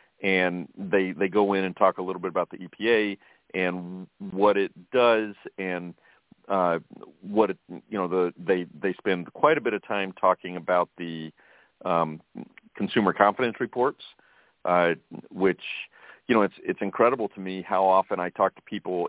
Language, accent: English, American